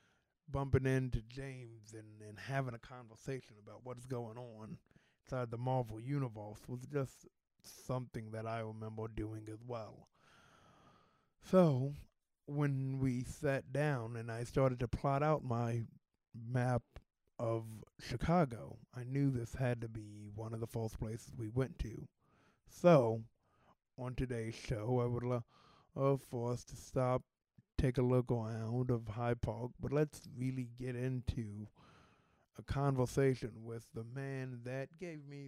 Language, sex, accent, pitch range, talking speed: English, male, American, 115-130 Hz, 145 wpm